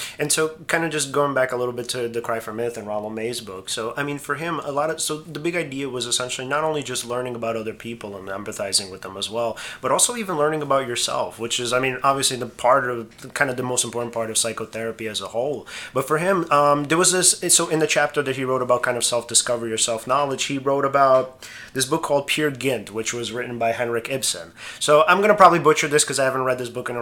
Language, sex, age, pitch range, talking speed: English, male, 30-49, 120-150 Hz, 265 wpm